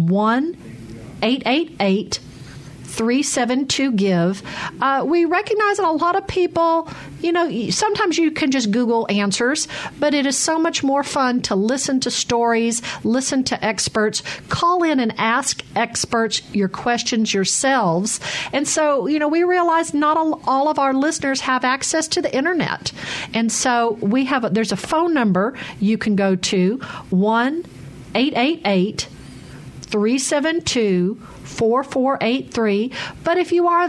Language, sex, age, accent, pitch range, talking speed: English, female, 50-69, American, 195-275 Hz, 135 wpm